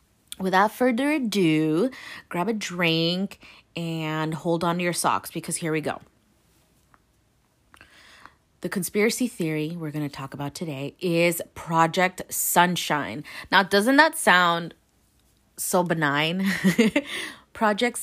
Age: 30-49